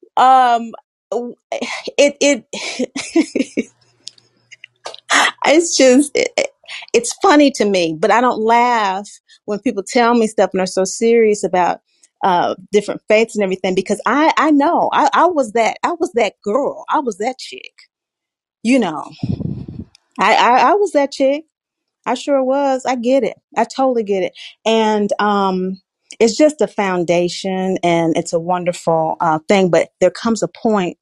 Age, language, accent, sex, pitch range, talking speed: 30-49, English, American, female, 185-285 Hz, 155 wpm